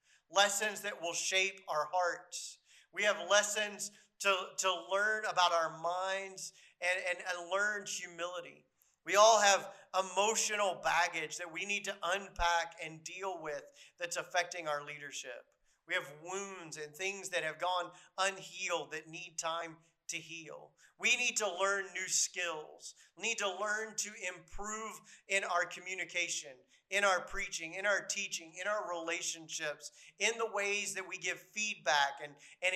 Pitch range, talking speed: 170-200 Hz, 150 wpm